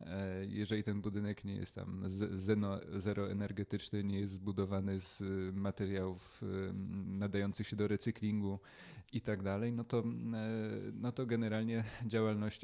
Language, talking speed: Polish, 110 wpm